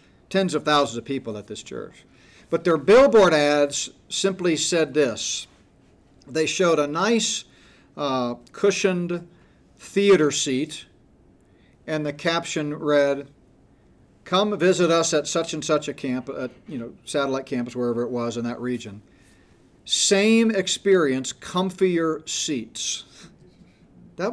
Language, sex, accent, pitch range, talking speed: English, male, American, 135-185 Hz, 130 wpm